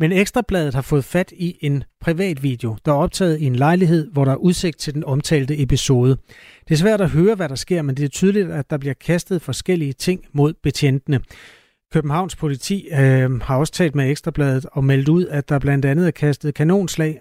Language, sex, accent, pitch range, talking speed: Danish, male, native, 135-165 Hz, 215 wpm